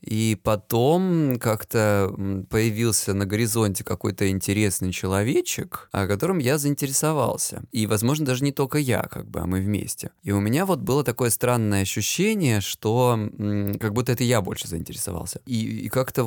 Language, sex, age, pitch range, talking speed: Russian, male, 20-39, 105-125 Hz, 155 wpm